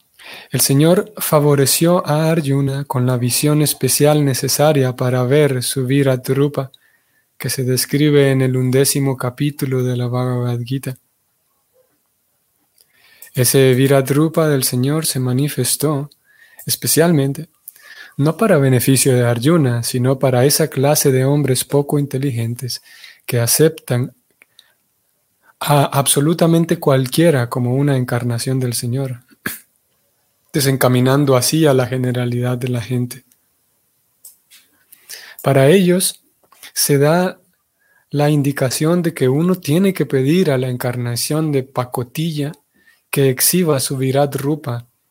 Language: Spanish